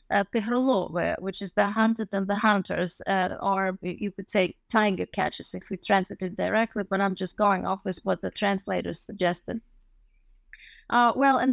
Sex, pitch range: female, 200-250 Hz